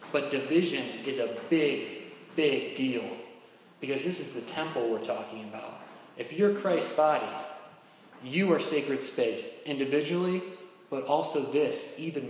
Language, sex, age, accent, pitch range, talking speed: English, male, 30-49, American, 130-175 Hz, 135 wpm